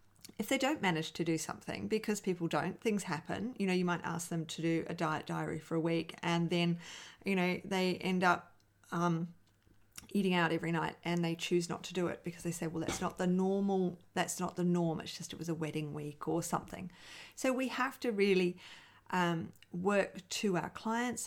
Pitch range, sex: 165-190 Hz, female